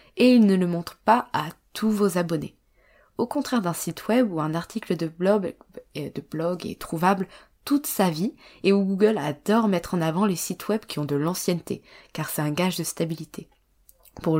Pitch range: 165-205 Hz